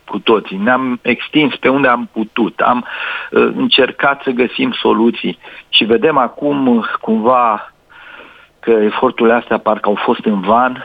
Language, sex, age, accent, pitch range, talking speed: Romanian, male, 50-69, native, 145-205 Hz, 150 wpm